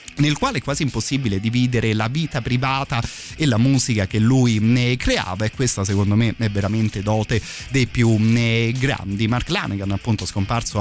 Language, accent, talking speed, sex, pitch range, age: Italian, native, 165 wpm, male, 105-125 Hz, 30-49